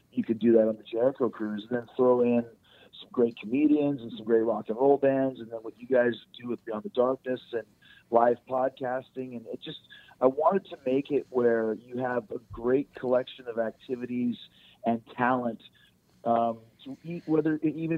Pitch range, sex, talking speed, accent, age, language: 115-130 Hz, male, 185 wpm, American, 40-59, English